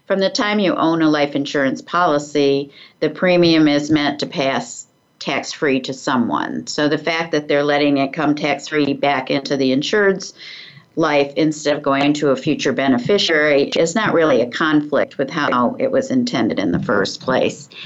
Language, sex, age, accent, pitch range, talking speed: English, female, 50-69, American, 145-170 Hz, 180 wpm